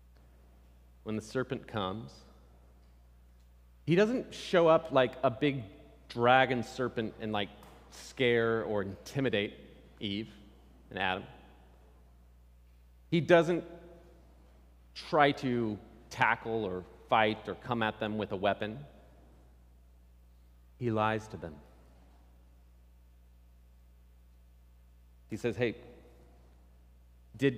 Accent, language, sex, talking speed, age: American, English, male, 95 wpm, 40-59